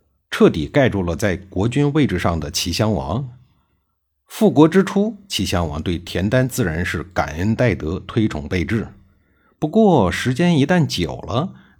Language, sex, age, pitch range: Chinese, male, 50-69, 85-125 Hz